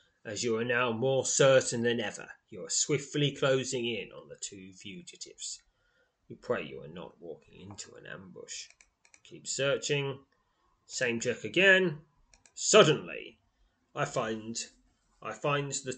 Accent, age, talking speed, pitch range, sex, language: British, 30-49, 140 wpm, 125-165 Hz, male, English